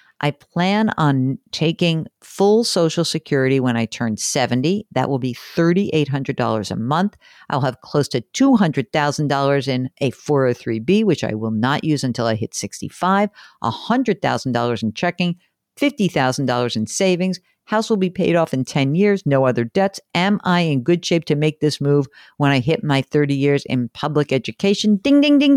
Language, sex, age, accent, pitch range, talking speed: English, female, 50-69, American, 130-180 Hz, 170 wpm